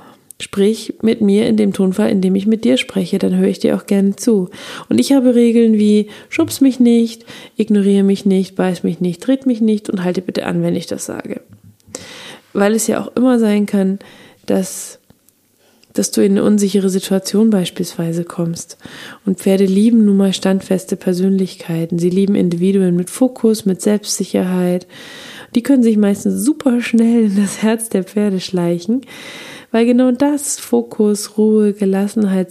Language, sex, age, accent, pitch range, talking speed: German, female, 20-39, German, 185-235 Hz, 170 wpm